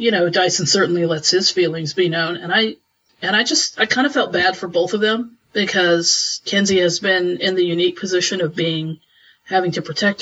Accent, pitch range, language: American, 170-200 Hz, English